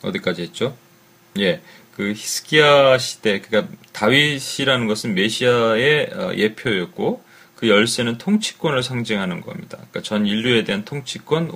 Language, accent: Korean, native